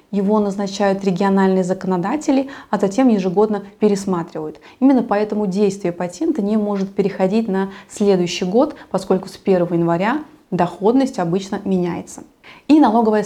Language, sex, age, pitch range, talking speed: Russian, female, 20-39, 190-230 Hz, 120 wpm